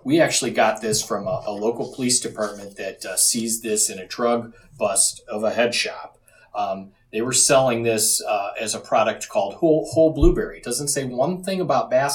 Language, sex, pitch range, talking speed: English, male, 110-130 Hz, 205 wpm